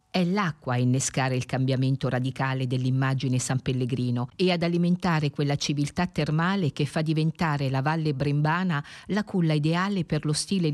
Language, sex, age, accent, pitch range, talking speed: Italian, female, 50-69, native, 125-155 Hz, 155 wpm